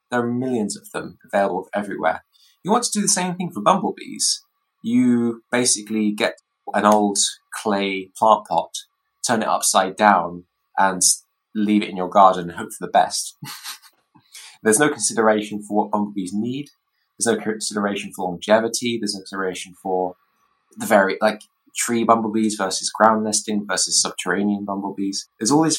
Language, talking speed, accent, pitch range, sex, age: English, 160 wpm, British, 100-125 Hz, male, 20-39